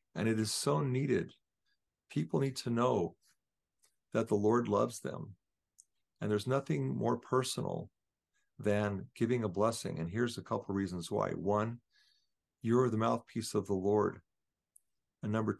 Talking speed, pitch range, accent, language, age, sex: 150 wpm, 100-120 Hz, American, English, 50-69, male